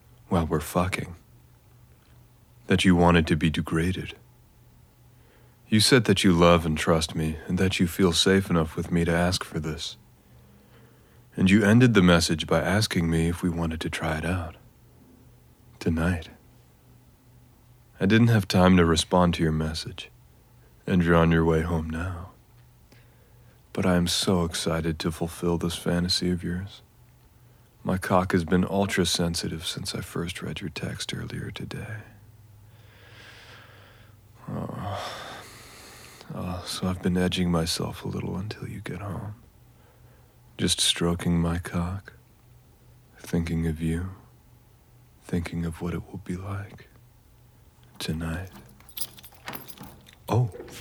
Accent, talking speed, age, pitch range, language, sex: American, 135 wpm, 40-59, 85-110 Hz, English, male